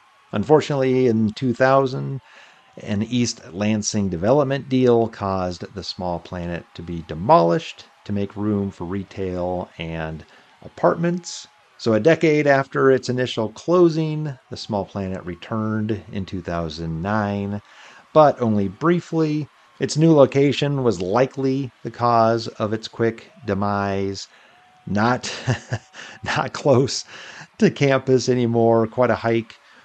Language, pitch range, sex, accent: English, 95-130 Hz, male, American